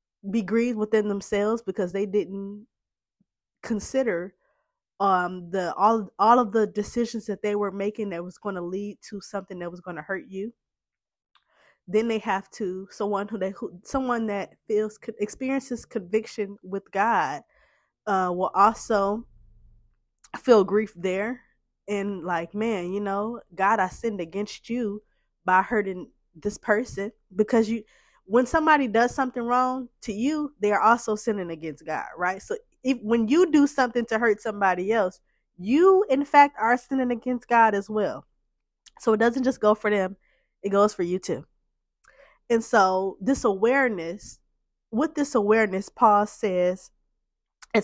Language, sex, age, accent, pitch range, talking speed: English, female, 20-39, American, 195-235 Hz, 155 wpm